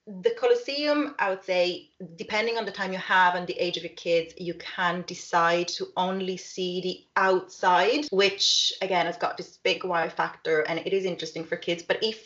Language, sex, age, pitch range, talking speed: English, female, 30-49, 175-225 Hz, 200 wpm